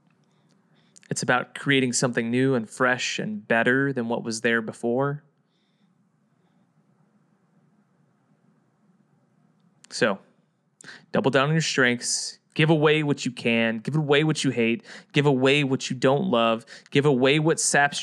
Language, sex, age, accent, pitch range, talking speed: English, male, 20-39, American, 135-190 Hz, 135 wpm